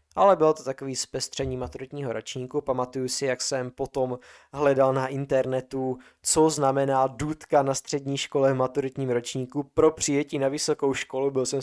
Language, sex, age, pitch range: Czech, male, 20-39, 115-130 Hz